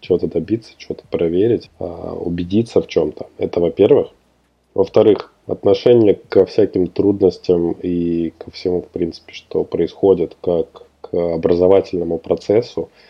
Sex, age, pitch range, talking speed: male, 20-39, 85-95 Hz, 115 wpm